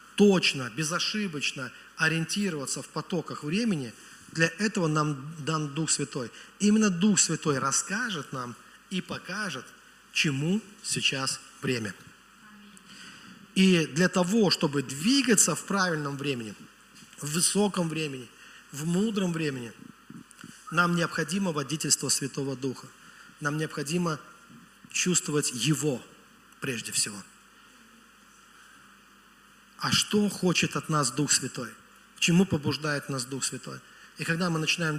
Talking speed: 110 wpm